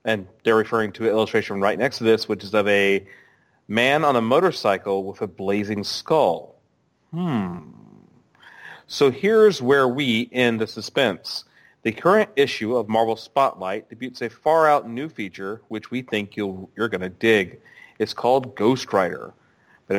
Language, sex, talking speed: English, male, 165 wpm